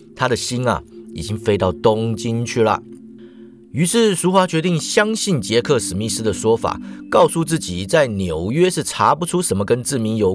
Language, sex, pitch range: Chinese, male, 110-175 Hz